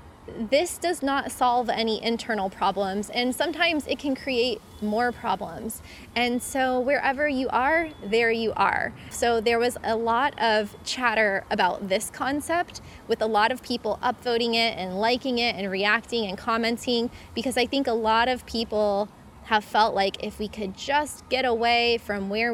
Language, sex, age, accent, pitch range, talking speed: English, female, 20-39, American, 215-245 Hz, 170 wpm